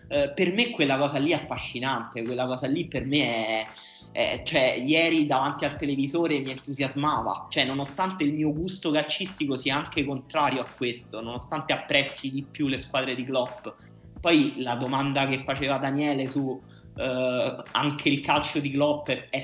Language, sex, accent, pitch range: Italian, male, native, 125-145 Hz